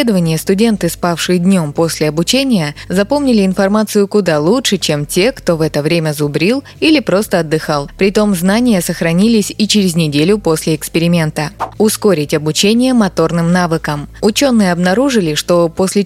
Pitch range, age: 165-210 Hz, 20-39